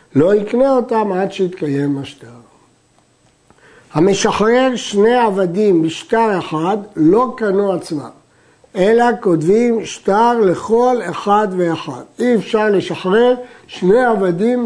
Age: 60-79